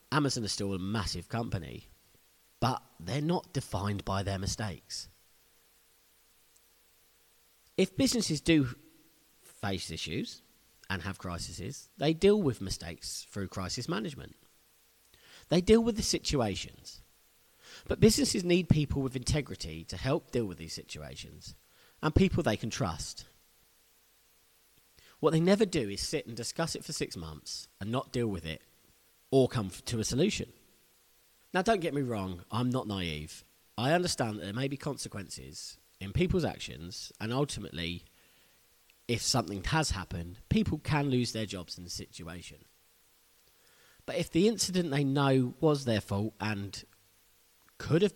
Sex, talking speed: male, 145 wpm